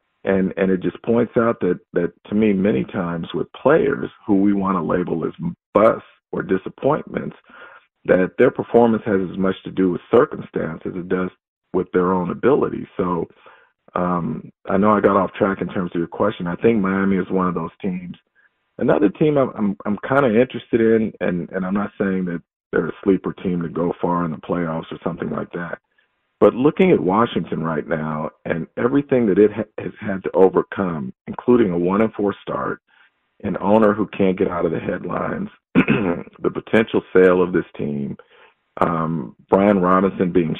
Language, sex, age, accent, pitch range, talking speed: English, male, 40-59, American, 90-105 Hz, 190 wpm